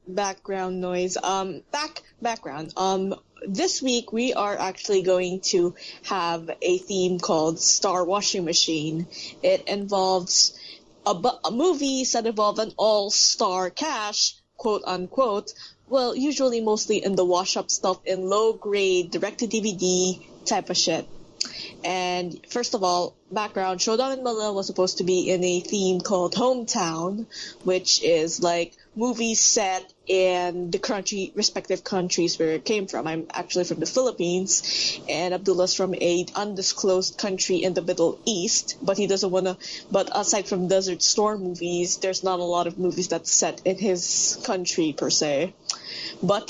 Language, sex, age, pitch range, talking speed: English, female, 20-39, 180-220 Hz, 155 wpm